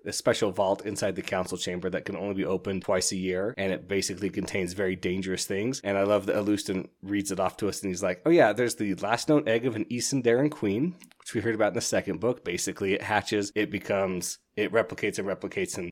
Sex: male